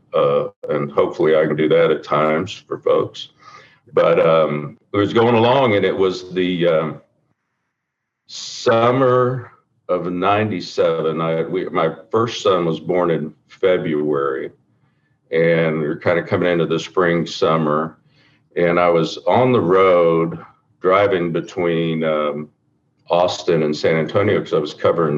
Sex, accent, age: male, American, 50-69